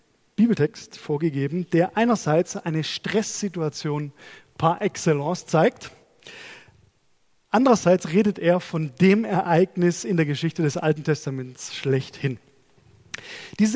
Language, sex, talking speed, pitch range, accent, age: German, male, 100 wpm, 150-210 Hz, German, 20-39